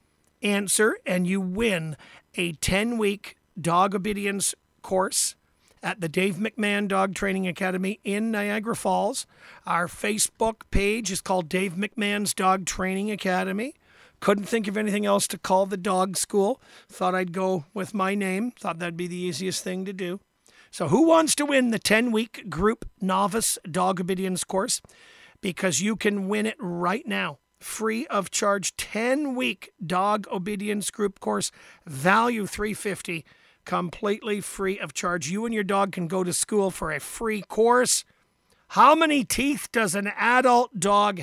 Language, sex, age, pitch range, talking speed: English, male, 50-69, 185-220 Hz, 155 wpm